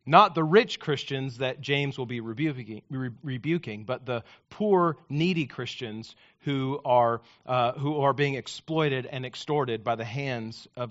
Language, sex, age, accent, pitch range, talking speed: English, male, 40-59, American, 135-165 Hz, 150 wpm